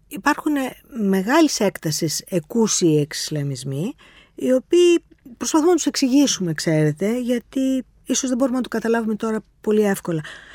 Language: Greek